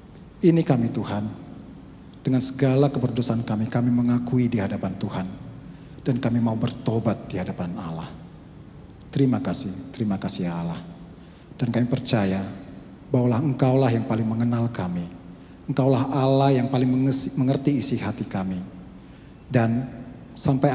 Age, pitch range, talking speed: 40-59, 100-135 Hz, 125 wpm